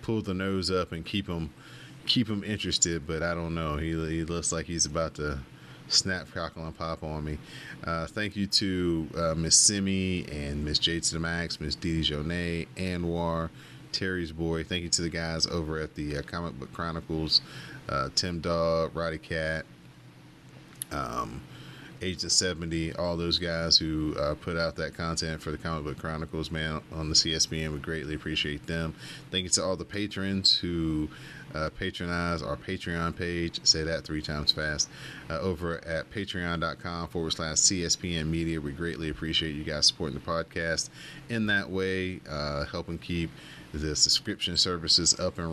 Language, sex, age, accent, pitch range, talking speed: English, male, 30-49, American, 75-85 Hz, 175 wpm